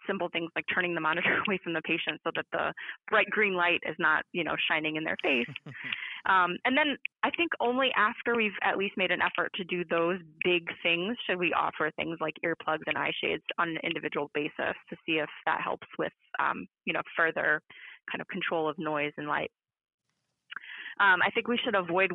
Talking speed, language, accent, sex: 210 wpm, English, American, female